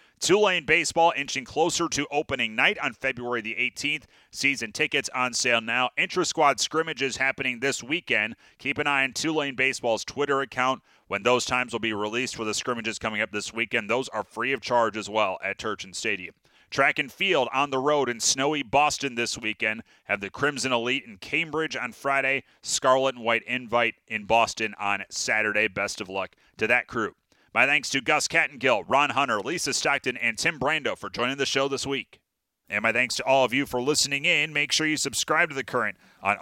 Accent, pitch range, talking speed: American, 120-150 Hz, 200 wpm